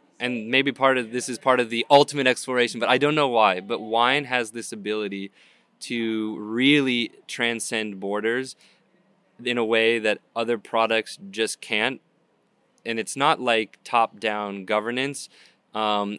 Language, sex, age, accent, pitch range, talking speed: Swedish, male, 20-39, American, 105-125 Hz, 150 wpm